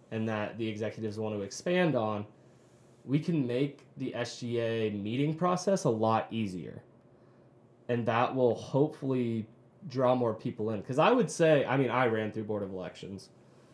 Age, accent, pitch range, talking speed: 20-39, American, 110-135 Hz, 165 wpm